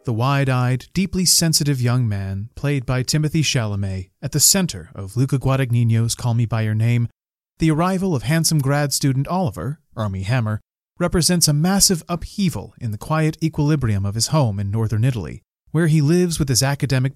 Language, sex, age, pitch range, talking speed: English, male, 30-49, 115-155 Hz, 175 wpm